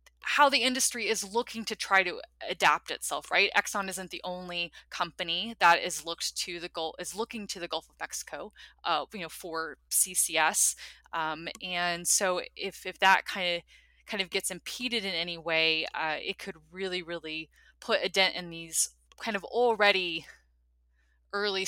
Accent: American